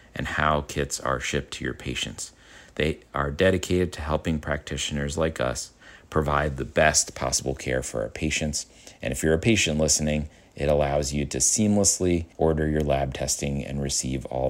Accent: American